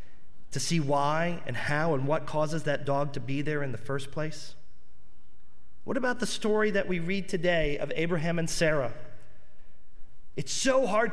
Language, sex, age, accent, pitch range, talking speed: English, male, 40-59, American, 140-210 Hz, 175 wpm